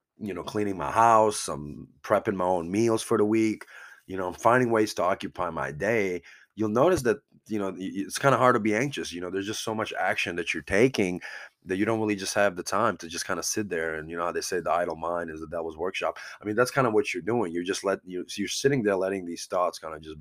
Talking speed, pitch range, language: 275 wpm, 90-115 Hz, English